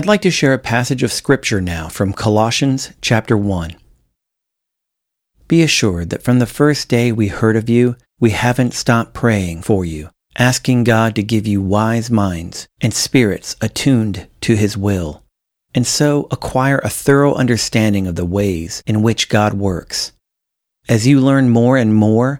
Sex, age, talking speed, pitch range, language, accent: male, 40-59, 165 wpm, 105-125 Hz, English, American